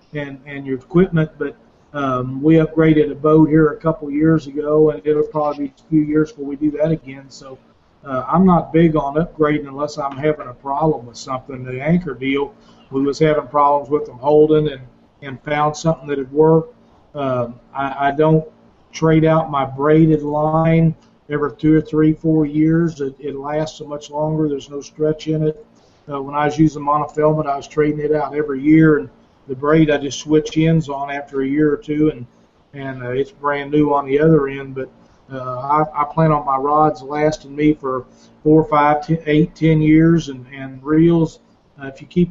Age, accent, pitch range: 40-59, American, 135-155 Hz